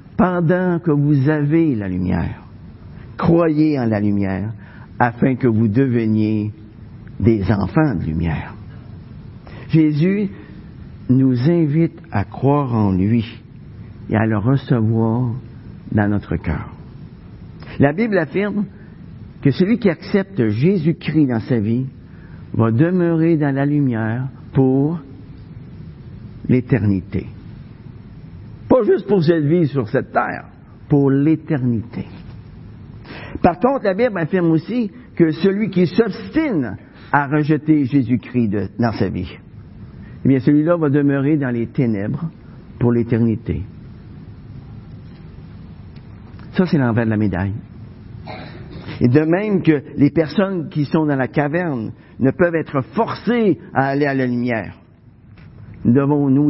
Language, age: French, 50-69